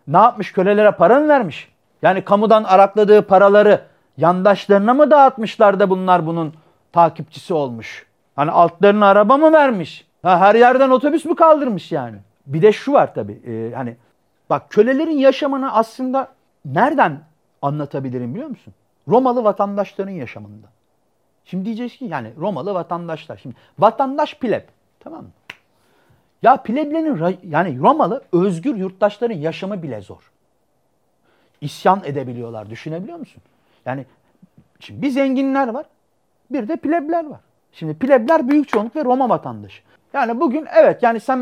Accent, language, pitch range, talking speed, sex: native, Turkish, 160-245 Hz, 135 wpm, male